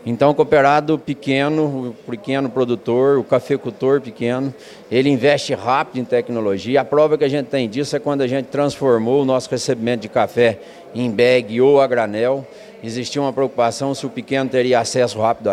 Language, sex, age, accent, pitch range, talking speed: Portuguese, male, 50-69, Brazilian, 120-140 Hz, 180 wpm